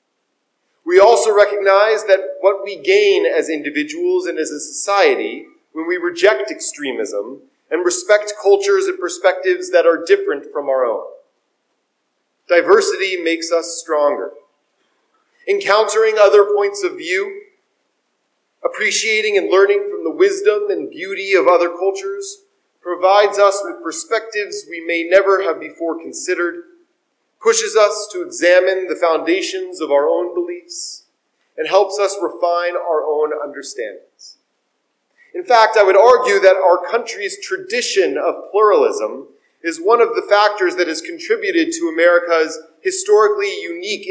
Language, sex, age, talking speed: English, male, 40-59, 135 wpm